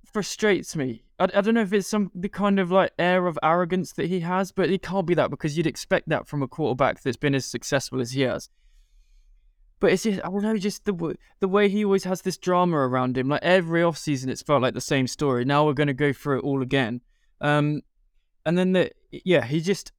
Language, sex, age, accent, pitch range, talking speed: English, male, 20-39, British, 130-180 Hz, 245 wpm